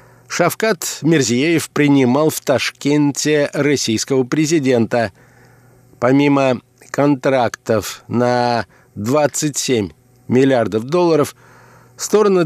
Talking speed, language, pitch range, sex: 65 wpm, Russian, 125-155 Hz, male